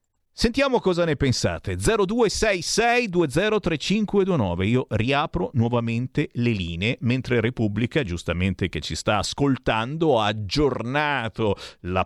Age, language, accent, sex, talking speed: 50-69, Italian, native, male, 100 wpm